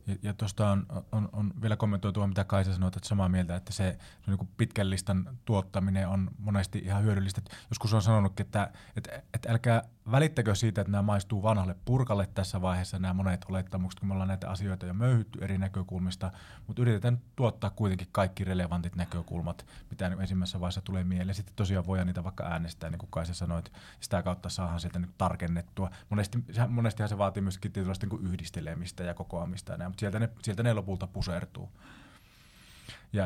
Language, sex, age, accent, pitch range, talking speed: Finnish, male, 30-49, native, 95-110 Hz, 190 wpm